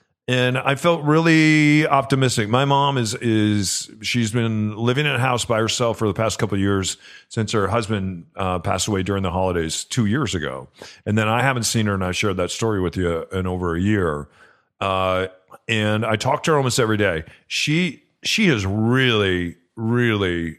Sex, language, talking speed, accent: male, English, 190 wpm, American